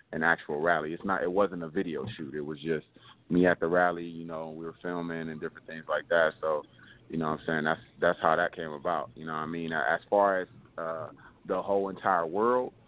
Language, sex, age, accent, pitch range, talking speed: English, male, 30-49, American, 85-100 Hz, 240 wpm